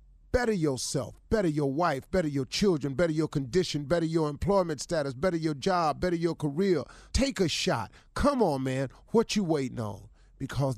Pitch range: 125-175 Hz